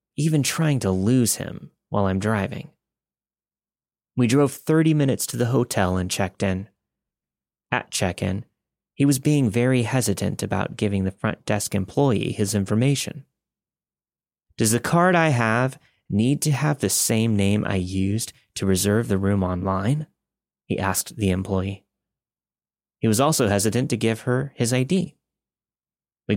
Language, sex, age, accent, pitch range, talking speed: English, male, 30-49, American, 100-130 Hz, 150 wpm